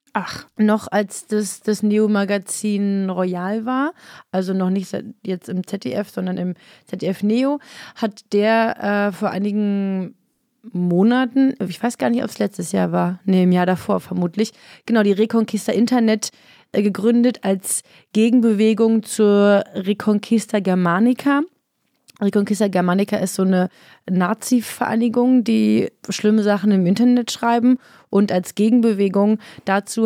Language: German